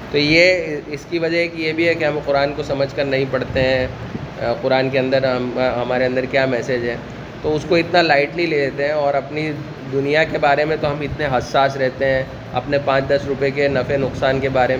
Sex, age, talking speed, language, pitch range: male, 20-39, 225 wpm, Urdu, 130-150 Hz